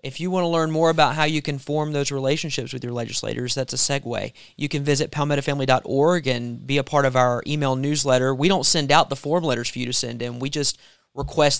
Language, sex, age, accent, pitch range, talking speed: English, male, 30-49, American, 125-145 Hz, 240 wpm